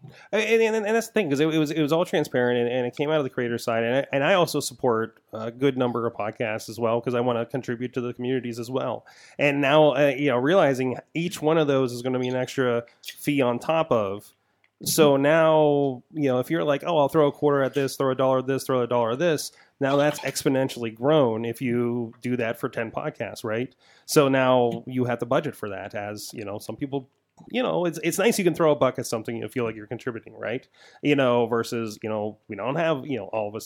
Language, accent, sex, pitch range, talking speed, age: English, American, male, 120-145 Hz, 260 wpm, 30-49